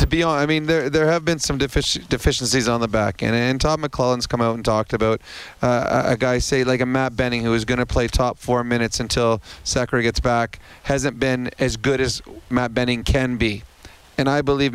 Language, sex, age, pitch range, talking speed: English, male, 30-49, 115-130 Hz, 230 wpm